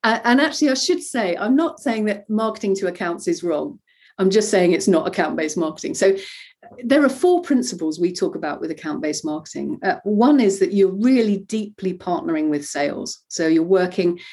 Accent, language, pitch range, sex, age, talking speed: British, English, 175-225 Hz, female, 40-59, 190 wpm